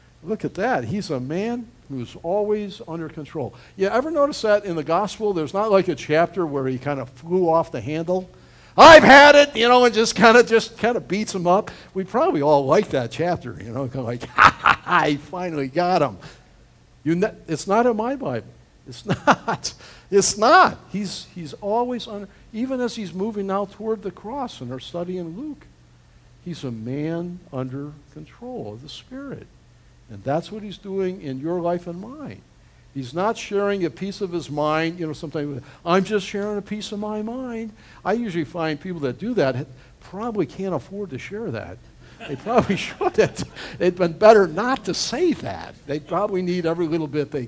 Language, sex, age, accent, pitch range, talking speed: English, male, 60-79, American, 145-215 Hz, 200 wpm